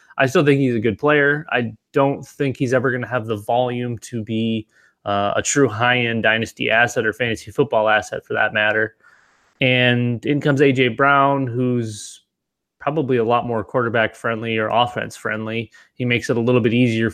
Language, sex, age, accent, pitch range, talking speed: English, male, 20-39, American, 110-135 Hz, 190 wpm